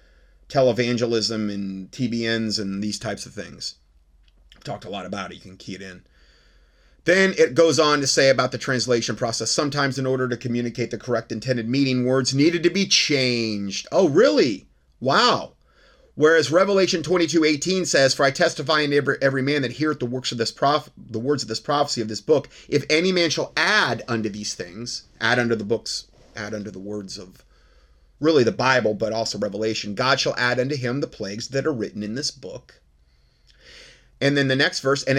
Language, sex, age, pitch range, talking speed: English, male, 30-49, 100-140 Hz, 195 wpm